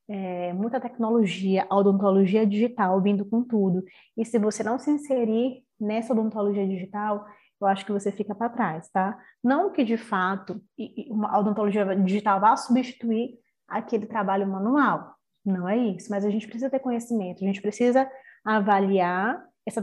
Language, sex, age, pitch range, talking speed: Portuguese, female, 20-39, 200-255 Hz, 155 wpm